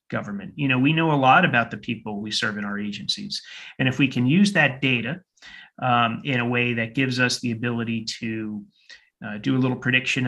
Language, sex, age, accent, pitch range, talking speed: English, male, 30-49, American, 115-145 Hz, 215 wpm